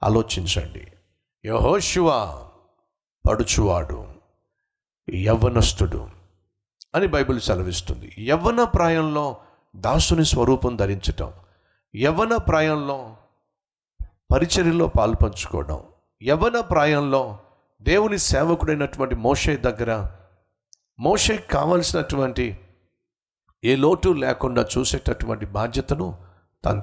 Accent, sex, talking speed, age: native, male, 70 wpm, 50-69